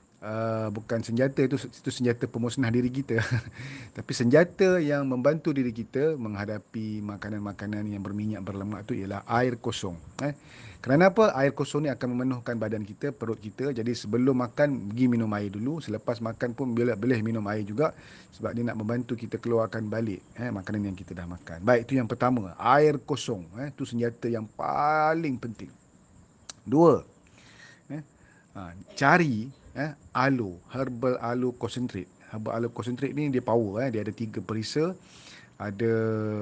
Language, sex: Malay, male